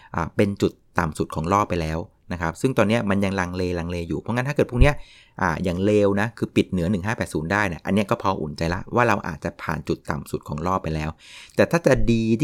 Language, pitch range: Thai, 90-120 Hz